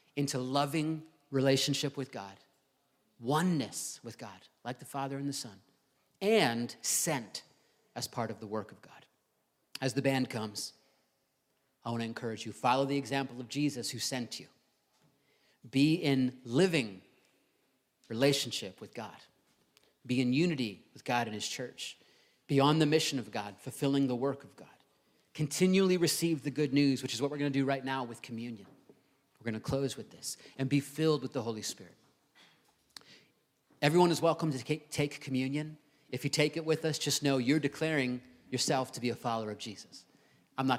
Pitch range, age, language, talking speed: 115-145 Hz, 40-59, English, 170 wpm